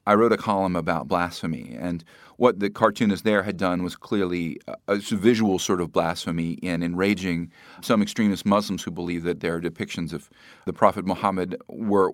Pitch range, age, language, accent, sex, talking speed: 90-110 Hz, 40-59, English, American, male, 175 wpm